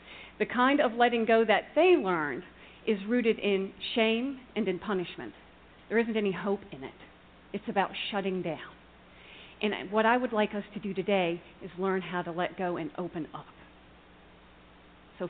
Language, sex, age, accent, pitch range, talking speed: English, female, 40-59, American, 175-215 Hz, 175 wpm